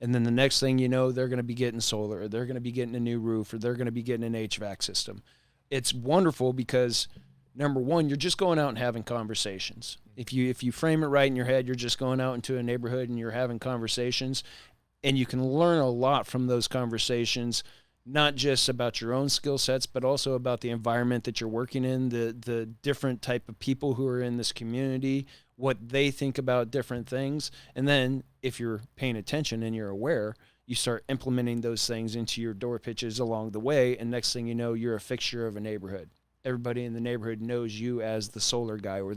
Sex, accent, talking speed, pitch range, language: male, American, 230 wpm, 115-130 Hz, English